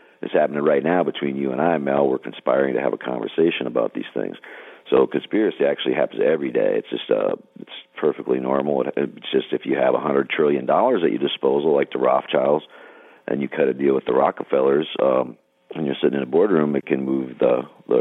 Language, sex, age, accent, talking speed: English, male, 50-69, American, 220 wpm